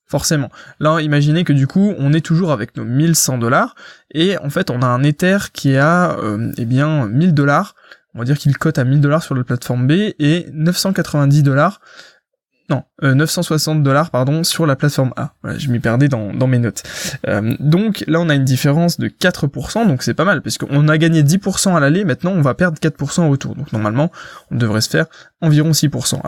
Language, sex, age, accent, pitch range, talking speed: French, male, 20-39, French, 135-170 Hz, 215 wpm